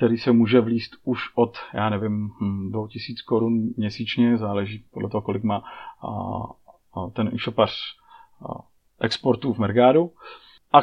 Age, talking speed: 40-59, 140 wpm